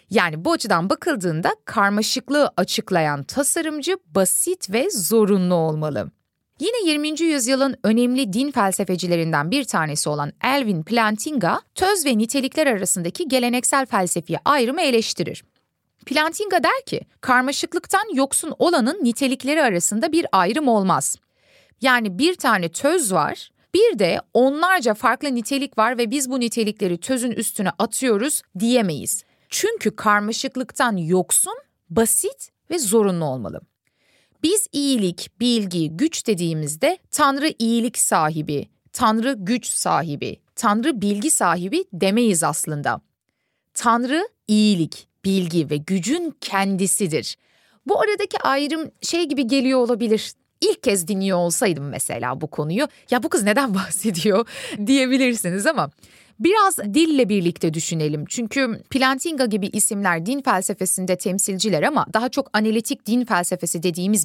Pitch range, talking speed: 185-280 Hz, 120 wpm